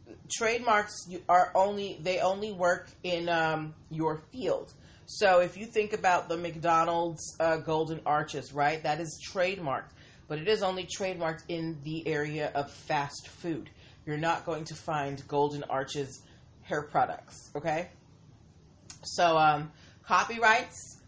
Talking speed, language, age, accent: 135 wpm, English, 30-49, American